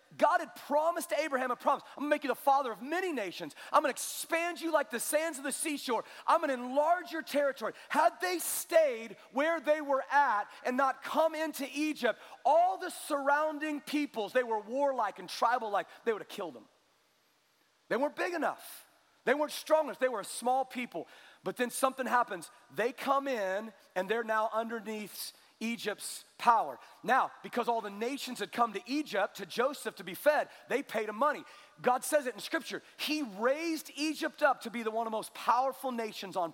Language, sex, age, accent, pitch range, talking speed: English, male, 30-49, American, 230-290 Hz, 195 wpm